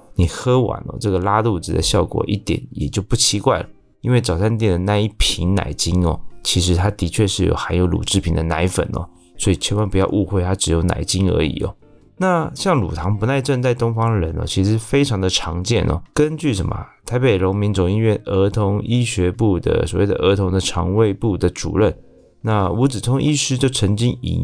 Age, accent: 20-39, native